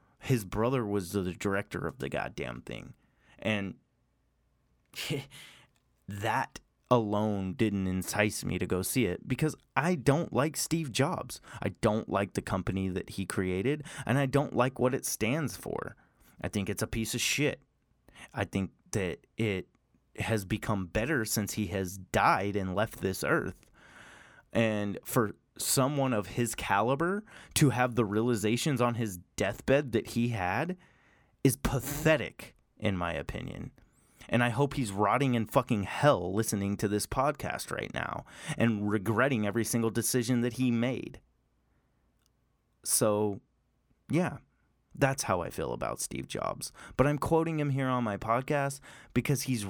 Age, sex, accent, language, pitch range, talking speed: 20-39, male, American, English, 105-135 Hz, 150 wpm